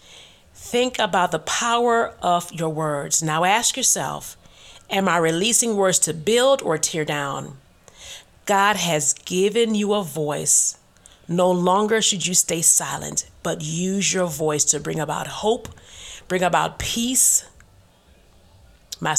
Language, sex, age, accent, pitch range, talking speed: English, female, 40-59, American, 155-220 Hz, 135 wpm